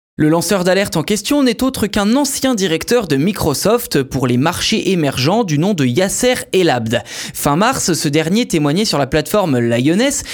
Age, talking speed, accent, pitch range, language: 20-39, 175 wpm, French, 150-210 Hz, French